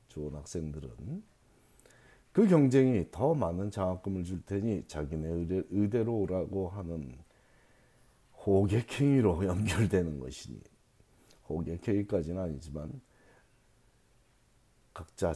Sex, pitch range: male, 85-120 Hz